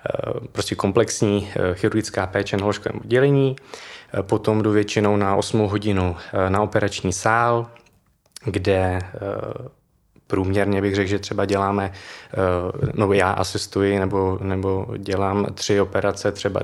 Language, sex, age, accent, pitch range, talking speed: Czech, male, 20-39, native, 95-105 Hz, 110 wpm